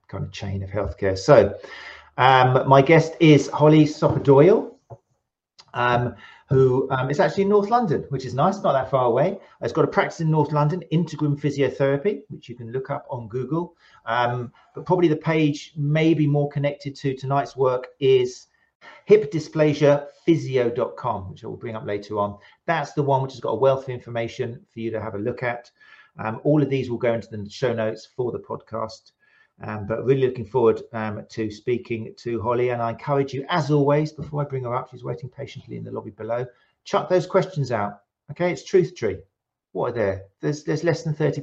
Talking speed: 195 wpm